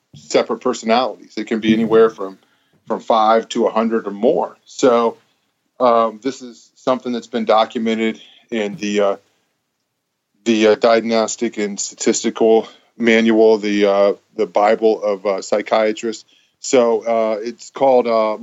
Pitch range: 110-130 Hz